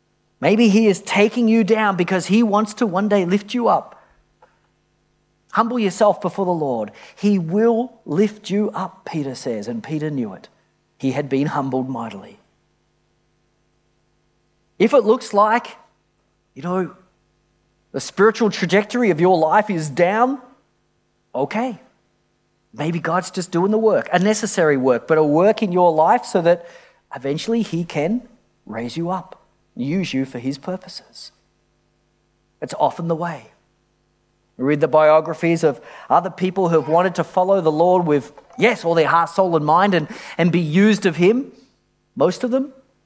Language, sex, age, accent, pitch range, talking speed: English, male, 40-59, Australian, 155-210 Hz, 155 wpm